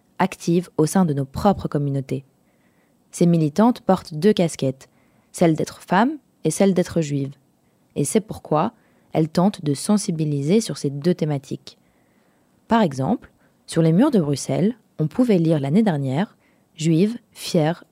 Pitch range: 150-195 Hz